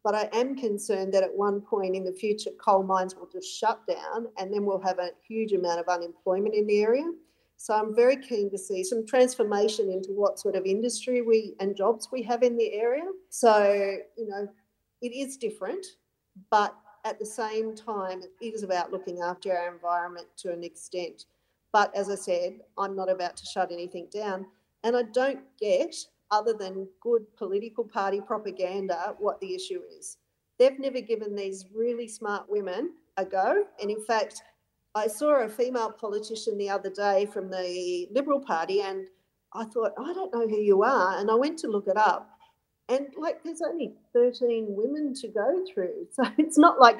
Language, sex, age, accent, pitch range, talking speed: English, female, 40-59, Australian, 195-245 Hz, 190 wpm